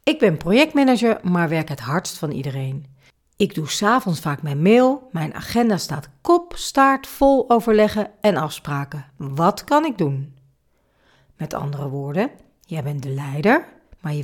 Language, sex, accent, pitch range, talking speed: Dutch, female, Dutch, 145-205 Hz, 155 wpm